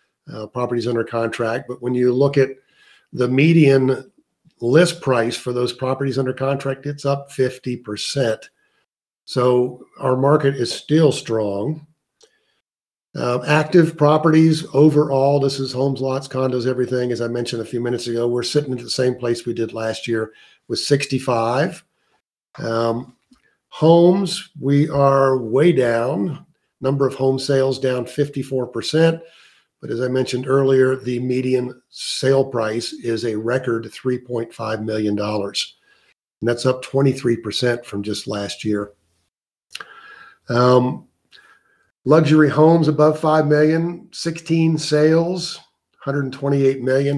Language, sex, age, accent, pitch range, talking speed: English, male, 50-69, American, 120-150 Hz, 125 wpm